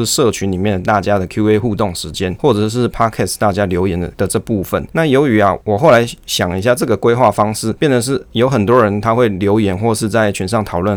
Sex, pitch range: male, 95-120 Hz